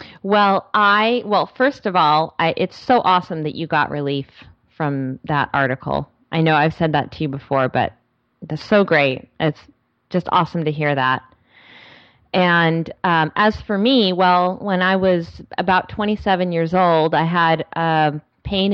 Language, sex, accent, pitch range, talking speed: English, female, American, 155-185 Hz, 165 wpm